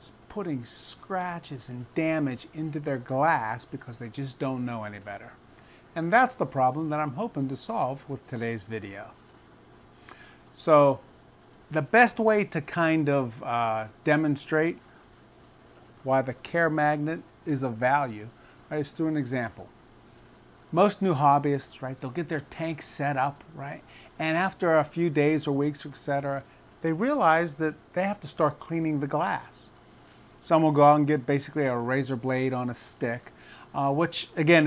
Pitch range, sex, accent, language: 130-160 Hz, male, American, English